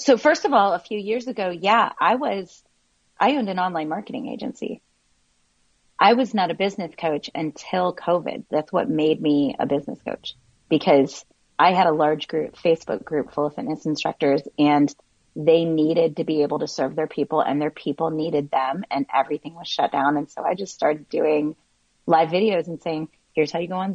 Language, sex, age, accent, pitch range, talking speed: English, female, 30-49, American, 145-175 Hz, 200 wpm